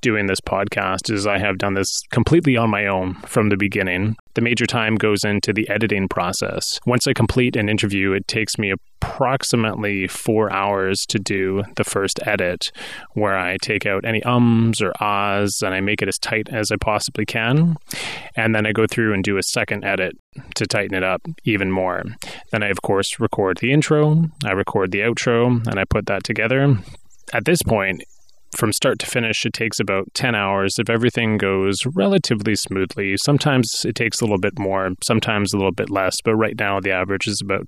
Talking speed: 200 wpm